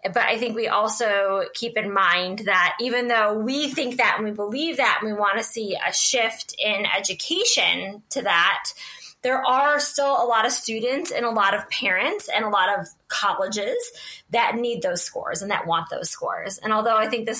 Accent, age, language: American, 20-39, English